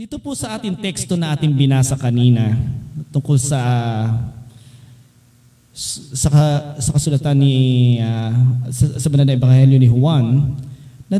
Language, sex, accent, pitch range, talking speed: Filipino, male, native, 120-140 Hz, 125 wpm